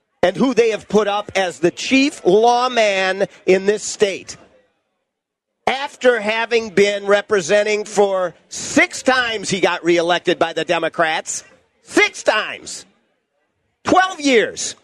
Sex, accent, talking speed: male, American, 120 wpm